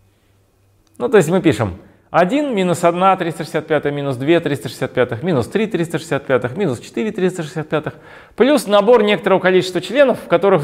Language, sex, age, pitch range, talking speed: Russian, male, 30-49, 110-175 Hz, 75 wpm